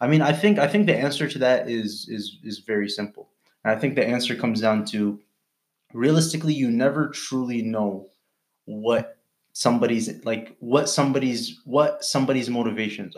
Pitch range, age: 115-150 Hz, 20-39